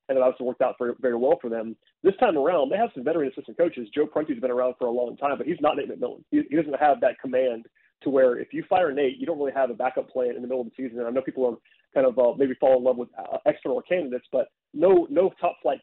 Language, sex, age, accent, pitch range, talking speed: English, male, 30-49, American, 125-150 Hz, 290 wpm